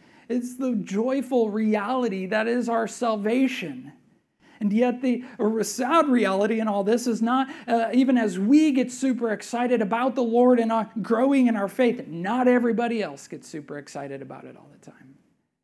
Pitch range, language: 200-245 Hz, English